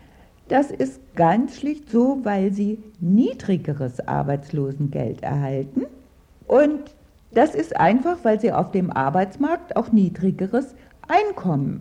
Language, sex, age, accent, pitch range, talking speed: German, female, 60-79, German, 160-245 Hz, 110 wpm